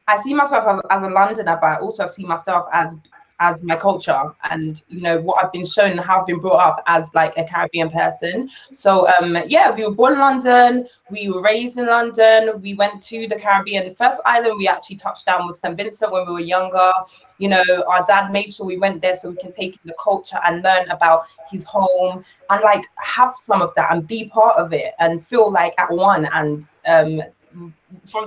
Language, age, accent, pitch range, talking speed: English, 20-39, British, 175-220 Hz, 220 wpm